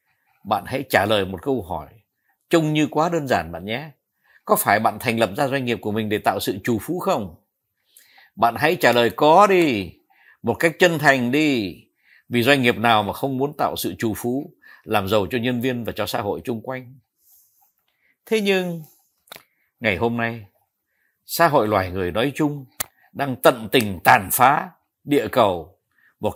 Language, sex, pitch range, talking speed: Vietnamese, male, 115-165 Hz, 185 wpm